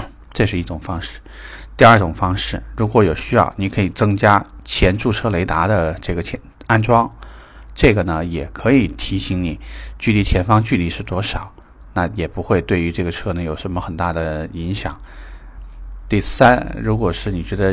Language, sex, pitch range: Chinese, male, 85-110 Hz